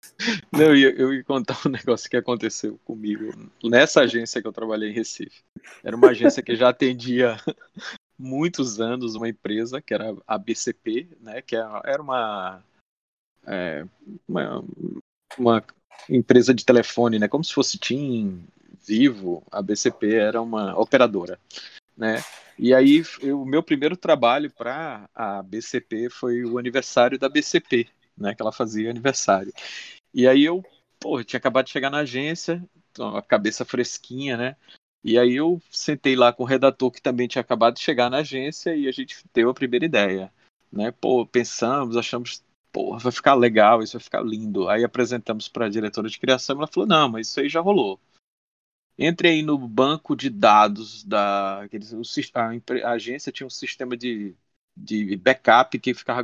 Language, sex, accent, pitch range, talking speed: Portuguese, male, Brazilian, 115-135 Hz, 165 wpm